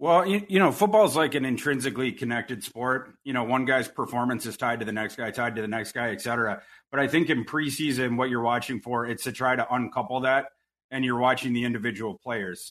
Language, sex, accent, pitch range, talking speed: English, male, American, 120-135 Hz, 235 wpm